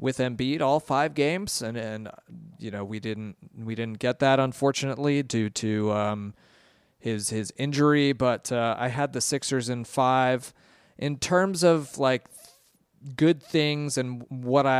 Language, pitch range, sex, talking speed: English, 110-135 Hz, male, 160 wpm